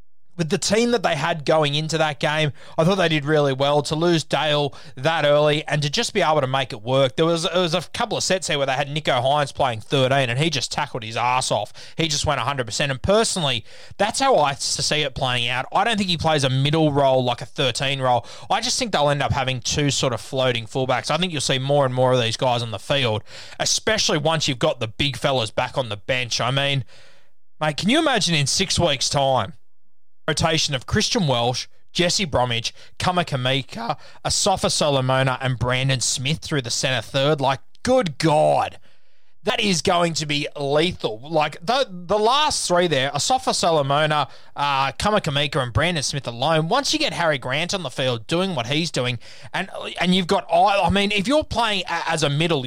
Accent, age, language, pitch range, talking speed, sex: Australian, 20-39, English, 135-185 Hz, 210 wpm, male